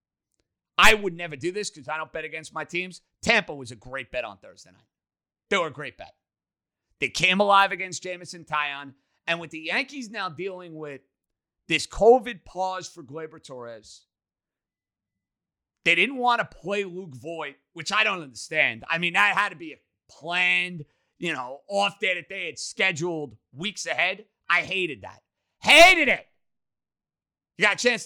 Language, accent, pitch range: English, American, 155-210 Hz